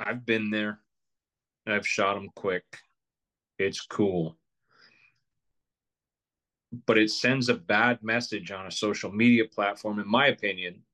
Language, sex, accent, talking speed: English, male, American, 125 wpm